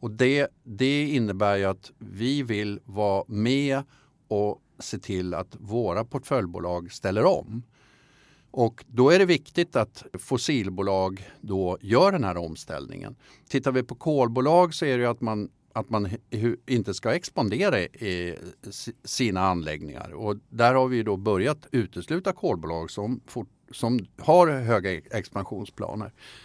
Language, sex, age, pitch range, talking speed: Swedish, male, 50-69, 95-130 Hz, 140 wpm